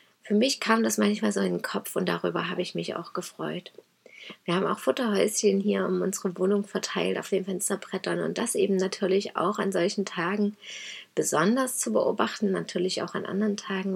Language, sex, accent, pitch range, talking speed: German, female, German, 185-210 Hz, 190 wpm